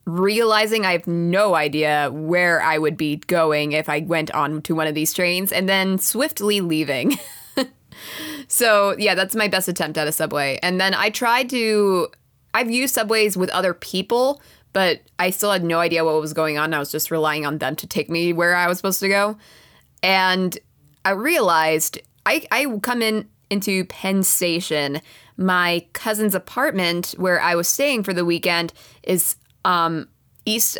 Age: 20-39